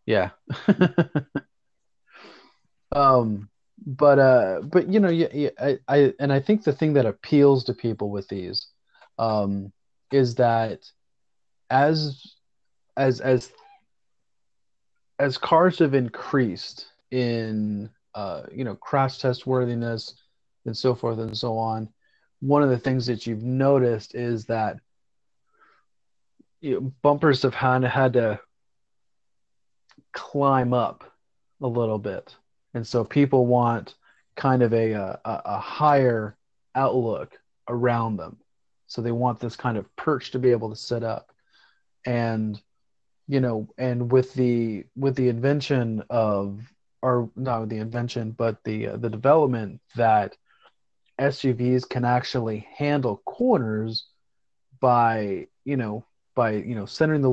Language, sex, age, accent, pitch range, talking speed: English, male, 30-49, American, 115-135 Hz, 130 wpm